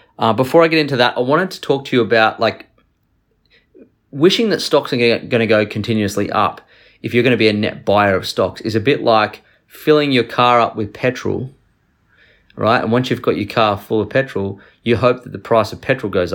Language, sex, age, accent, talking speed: English, male, 30-49, Australian, 225 wpm